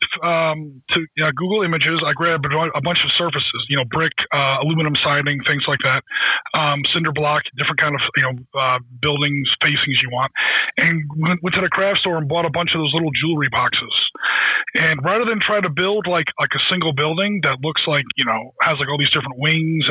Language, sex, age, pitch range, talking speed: English, male, 20-39, 145-170 Hz, 210 wpm